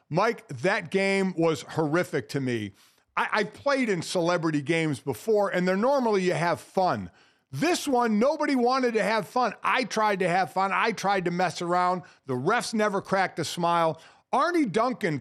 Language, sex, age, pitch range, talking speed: English, male, 50-69, 160-210 Hz, 180 wpm